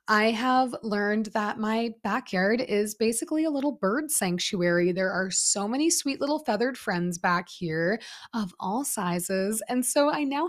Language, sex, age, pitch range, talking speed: English, female, 20-39, 180-250 Hz, 165 wpm